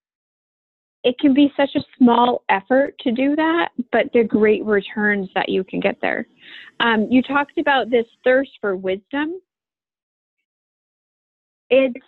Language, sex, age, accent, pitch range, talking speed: English, female, 30-49, American, 210-265 Hz, 140 wpm